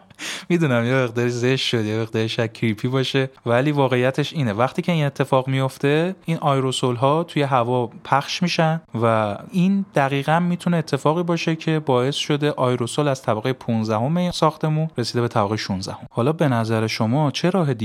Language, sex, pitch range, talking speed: Persian, male, 115-155 Hz, 160 wpm